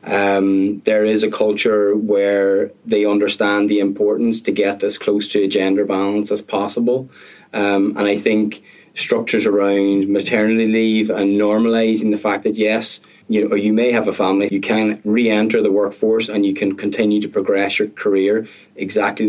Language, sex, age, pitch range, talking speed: English, male, 20-39, 100-110 Hz, 175 wpm